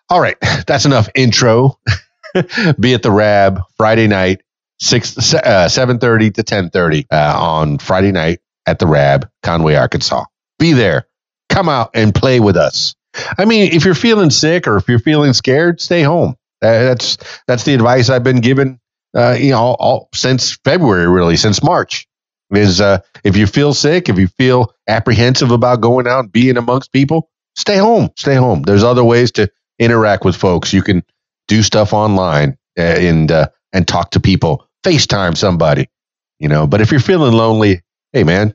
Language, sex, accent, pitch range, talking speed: English, male, American, 100-130 Hz, 175 wpm